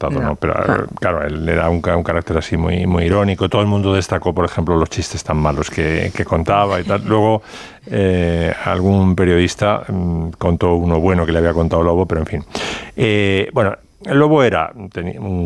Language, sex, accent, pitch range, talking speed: Spanish, male, Spanish, 85-105 Hz, 180 wpm